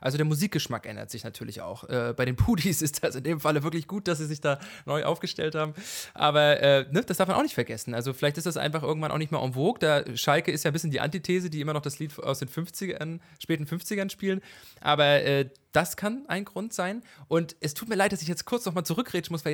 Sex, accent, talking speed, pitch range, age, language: male, German, 260 wpm, 135-170 Hz, 20-39, English